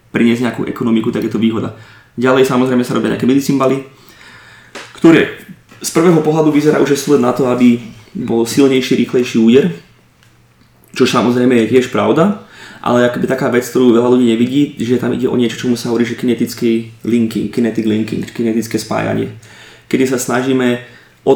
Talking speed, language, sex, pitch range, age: 165 wpm, Slovak, male, 110-125 Hz, 20-39